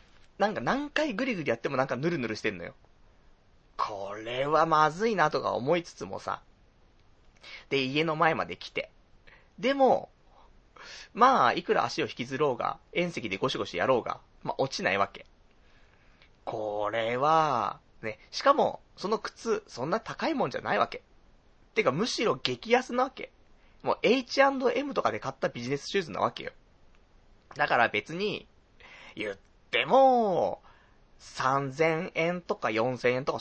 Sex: male